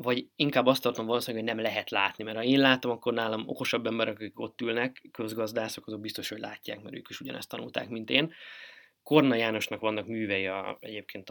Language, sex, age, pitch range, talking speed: Hungarian, male, 20-39, 110-135 Hz, 200 wpm